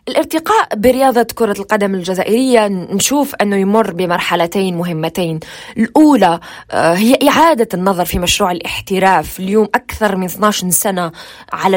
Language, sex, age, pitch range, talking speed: Arabic, female, 20-39, 180-240 Hz, 115 wpm